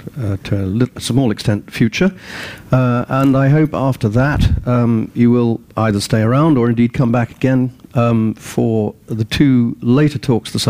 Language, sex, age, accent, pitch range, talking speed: English, male, 50-69, British, 100-130 Hz, 170 wpm